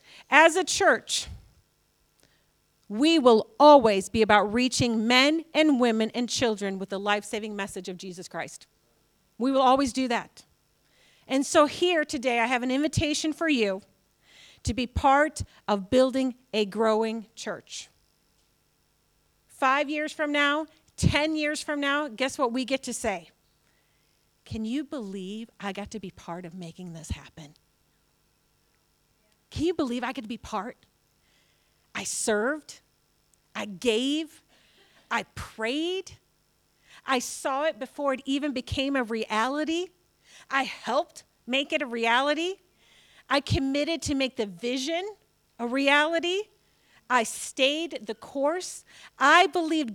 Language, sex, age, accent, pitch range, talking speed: English, female, 40-59, American, 220-300 Hz, 135 wpm